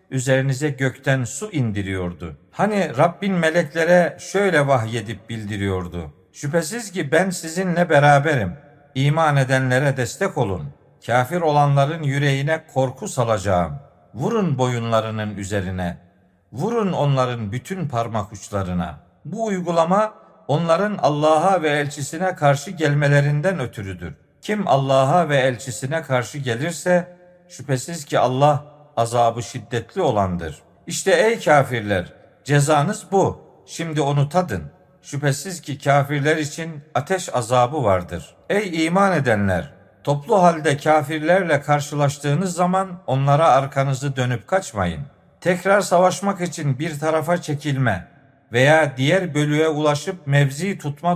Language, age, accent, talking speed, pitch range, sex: Turkish, 50-69, native, 110 wpm, 125-175 Hz, male